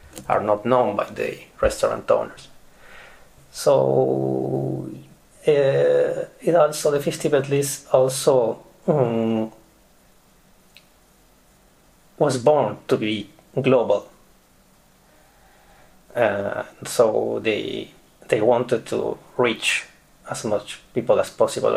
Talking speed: 95 wpm